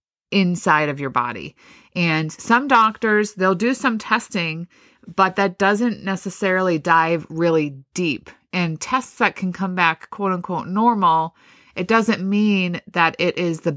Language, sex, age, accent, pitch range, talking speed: English, female, 30-49, American, 160-195 Hz, 150 wpm